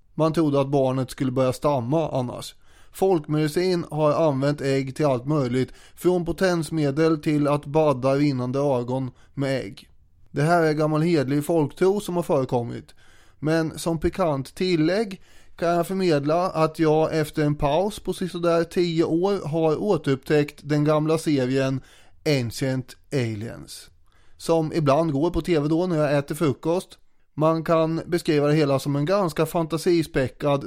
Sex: male